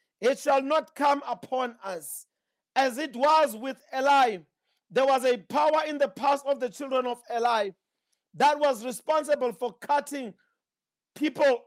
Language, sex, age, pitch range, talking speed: English, male, 50-69, 225-280 Hz, 150 wpm